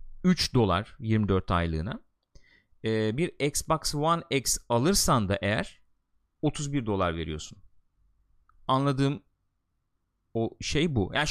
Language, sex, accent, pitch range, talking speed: Turkish, male, native, 105-150 Hz, 105 wpm